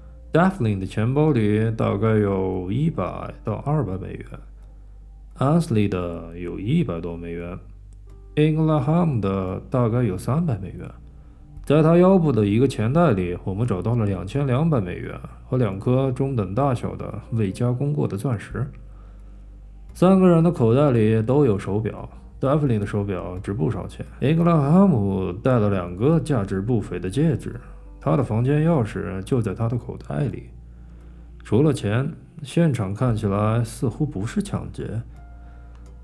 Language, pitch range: Chinese, 95-140 Hz